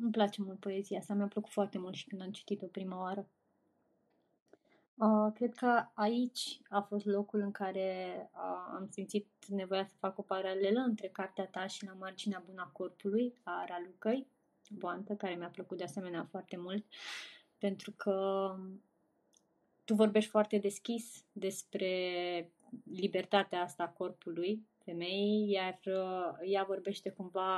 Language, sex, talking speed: Romanian, female, 140 wpm